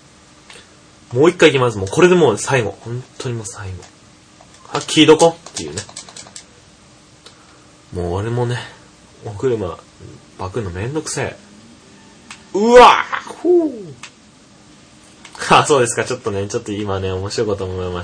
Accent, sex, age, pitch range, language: native, male, 20-39, 95-125 Hz, Japanese